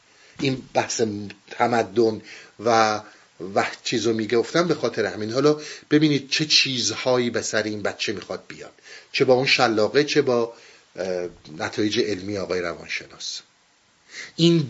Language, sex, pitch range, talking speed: Persian, male, 115-155 Hz, 125 wpm